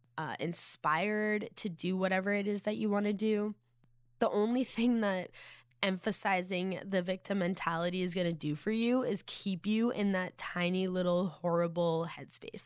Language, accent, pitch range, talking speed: English, American, 170-205 Hz, 165 wpm